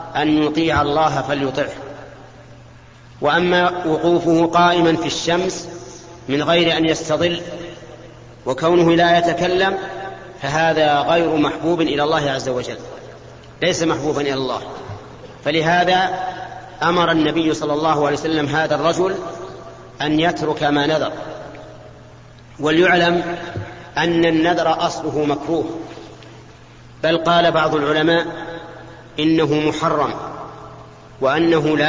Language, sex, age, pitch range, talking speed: Arabic, male, 40-59, 140-170 Hz, 100 wpm